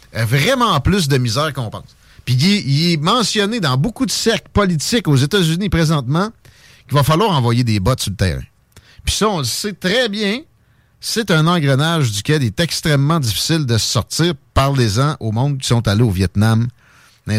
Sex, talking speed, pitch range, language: male, 195 wpm, 115-165 Hz, French